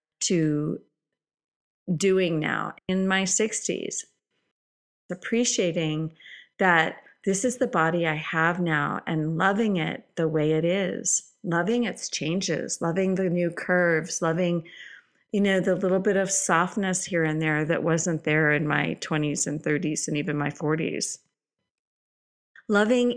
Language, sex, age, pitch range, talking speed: English, female, 30-49, 165-200 Hz, 135 wpm